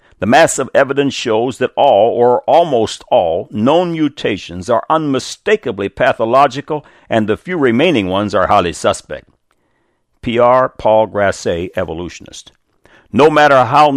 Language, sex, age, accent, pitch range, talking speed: English, male, 60-79, American, 100-150 Hz, 130 wpm